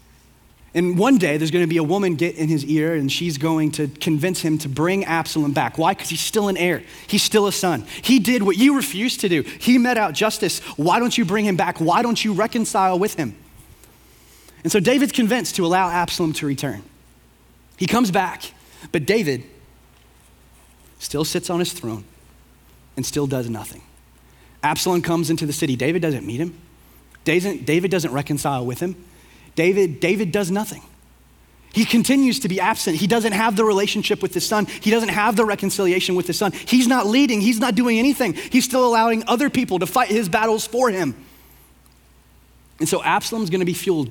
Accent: American